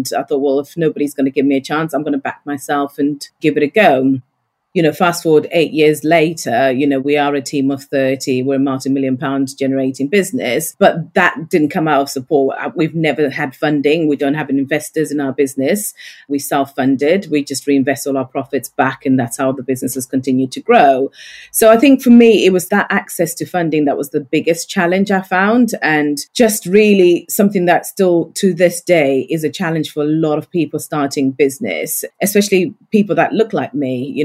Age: 30-49